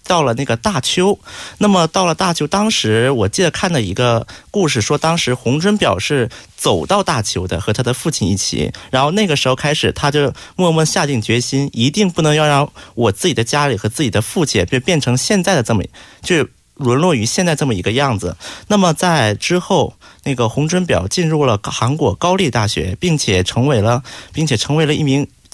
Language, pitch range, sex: Korean, 115-175 Hz, male